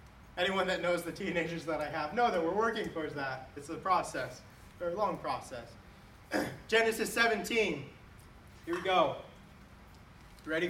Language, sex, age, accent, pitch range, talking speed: English, male, 30-49, American, 180-240 Hz, 150 wpm